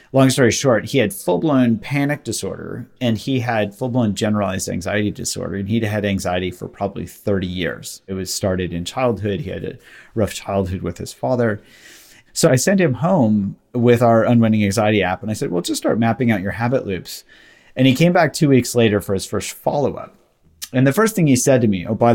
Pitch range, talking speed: 105-150 Hz, 210 wpm